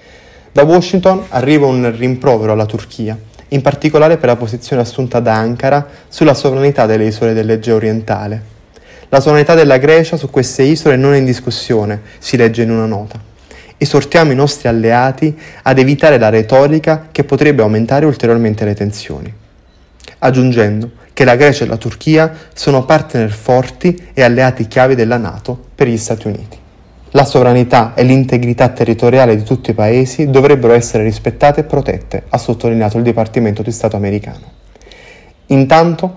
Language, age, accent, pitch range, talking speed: Italian, 20-39, native, 115-140 Hz, 155 wpm